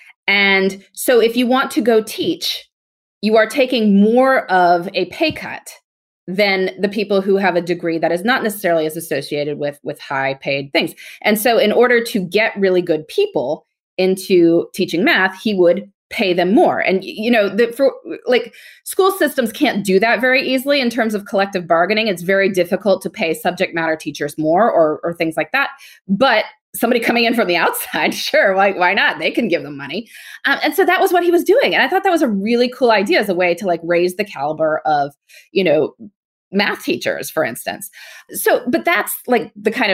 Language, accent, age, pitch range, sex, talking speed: English, American, 20-39, 175-230 Hz, female, 205 wpm